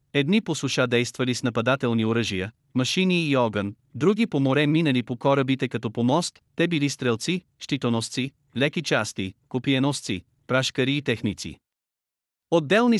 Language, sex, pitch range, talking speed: Bulgarian, male, 125-155 Hz, 135 wpm